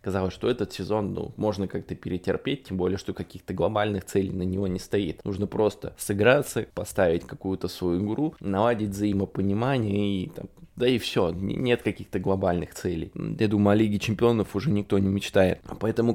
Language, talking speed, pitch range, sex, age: Russian, 170 wpm, 95-115 Hz, male, 20-39